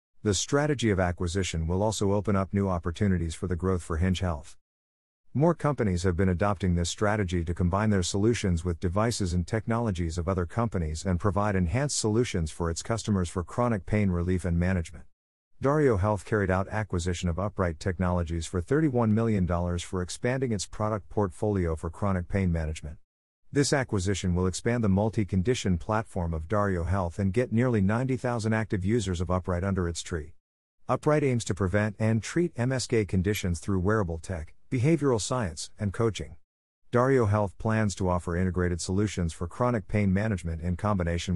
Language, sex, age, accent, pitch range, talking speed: English, male, 50-69, American, 90-110 Hz, 170 wpm